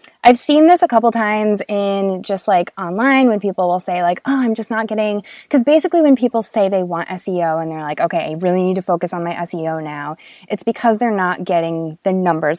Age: 20-39